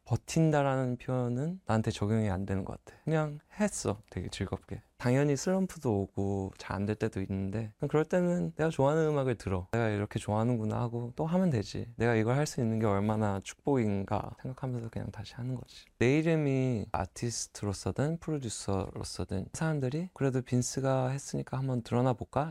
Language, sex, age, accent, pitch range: Korean, male, 20-39, native, 105-135 Hz